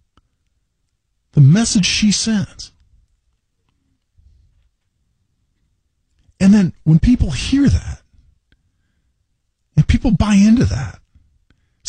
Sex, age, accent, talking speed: male, 40-59, American, 80 wpm